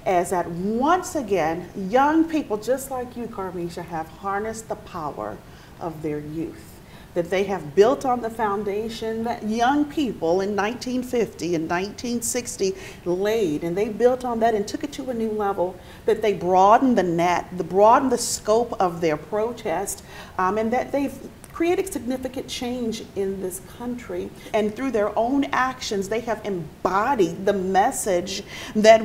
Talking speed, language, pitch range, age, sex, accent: 160 wpm, English, 200-275 Hz, 40-59, female, American